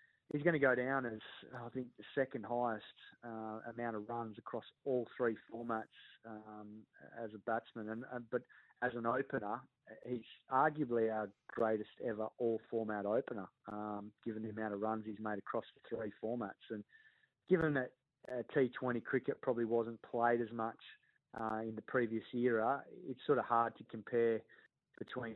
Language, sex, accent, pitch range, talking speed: English, male, Australian, 110-120 Hz, 170 wpm